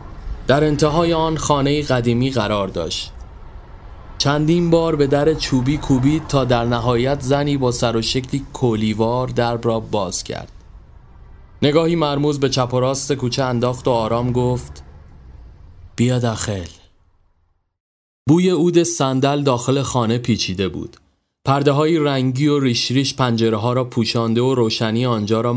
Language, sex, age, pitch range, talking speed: Persian, male, 30-49, 110-145 Hz, 140 wpm